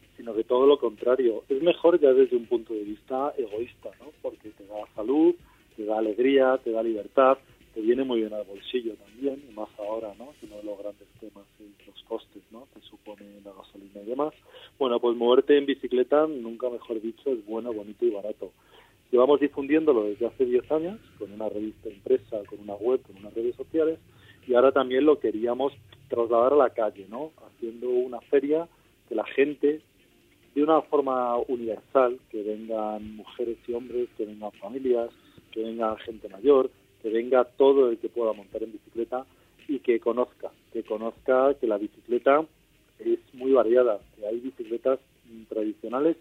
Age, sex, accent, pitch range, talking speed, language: 40-59, male, Spanish, 110-145 Hz, 180 wpm, Spanish